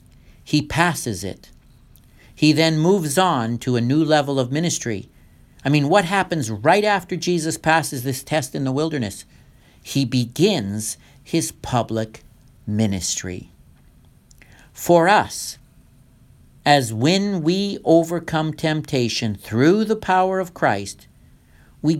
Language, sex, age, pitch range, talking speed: English, male, 60-79, 110-160 Hz, 120 wpm